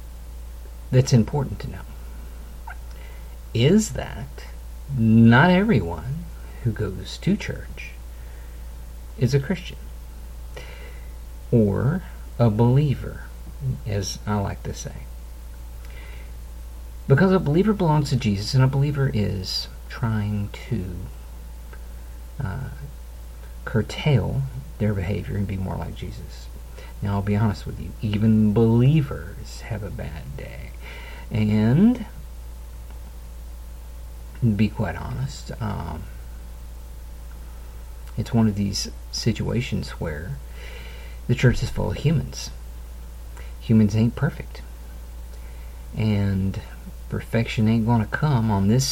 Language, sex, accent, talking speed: English, male, American, 105 wpm